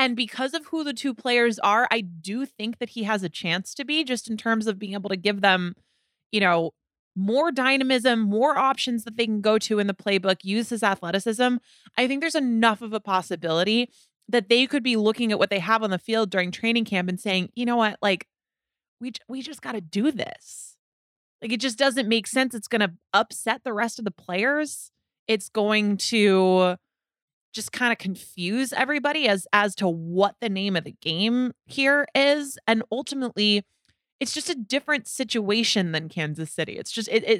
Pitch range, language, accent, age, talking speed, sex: 195-250 Hz, English, American, 20-39, 200 wpm, female